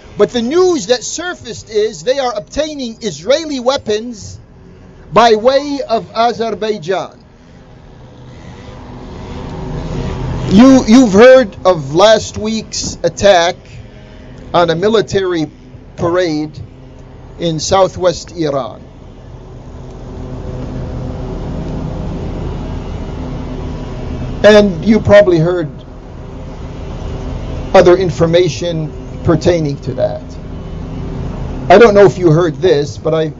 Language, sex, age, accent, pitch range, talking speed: English, male, 50-69, American, 140-220 Hz, 85 wpm